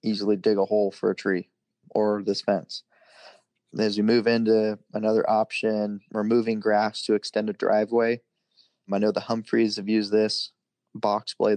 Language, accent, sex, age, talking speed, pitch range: English, American, male, 20-39, 160 wpm, 105-110 Hz